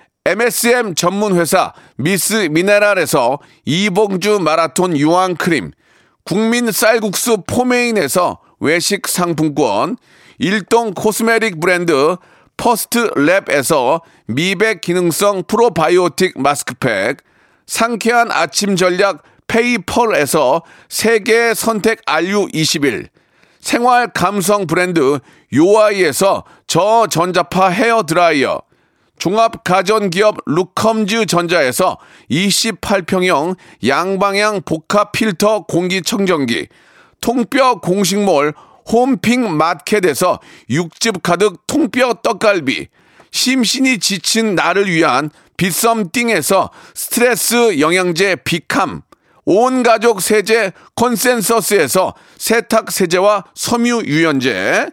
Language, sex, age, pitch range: Korean, male, 40-59, 180-230 Hz